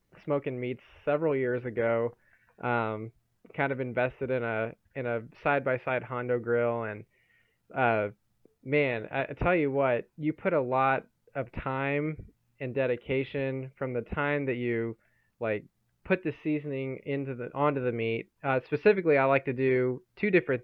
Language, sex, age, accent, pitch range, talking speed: English, male, 20-39, American, 120-140 Hz, 165 wpm